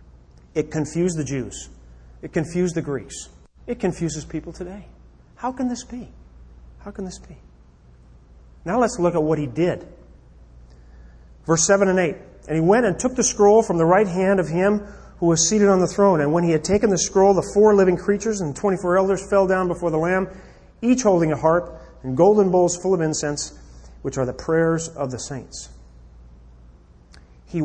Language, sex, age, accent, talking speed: English, male, 40-59, American, 190 wpm